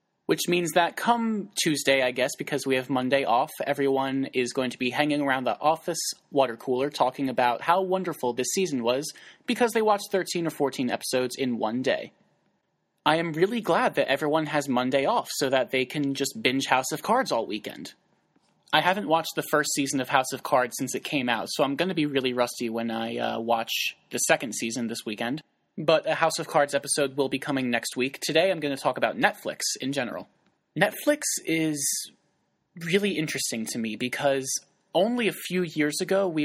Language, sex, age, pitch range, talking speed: English, male, 20-39, 130-165 Hz, 200 wpm